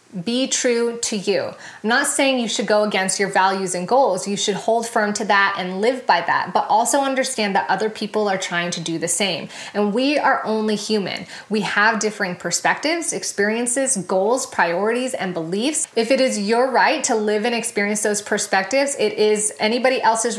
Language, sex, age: English, female, 20-39